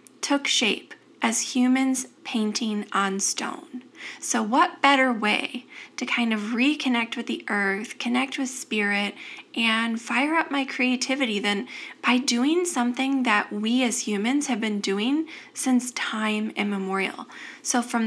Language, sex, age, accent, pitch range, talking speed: English, female, 20-39, American, 215-270 Hz, 140 wpm